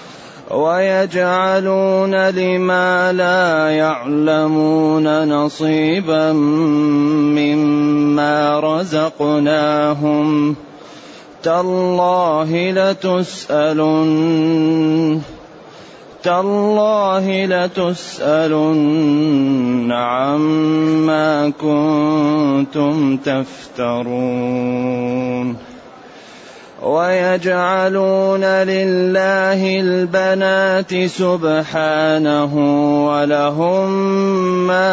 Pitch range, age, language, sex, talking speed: 150-185 Hz, 30-49, Arabic, male, 35 wpm